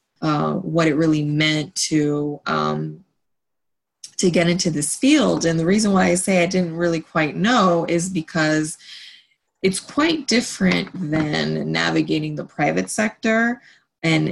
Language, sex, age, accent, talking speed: English, female, 20-39, American, 145 wpm